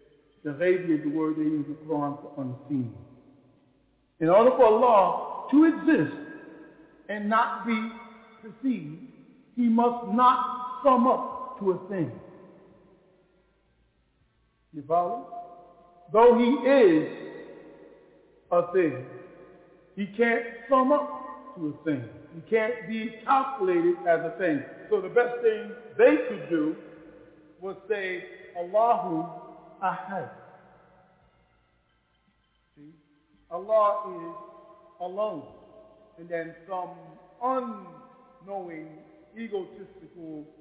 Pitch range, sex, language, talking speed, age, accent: 165-240 Hz, male, English, 100 wpm, 50-69, American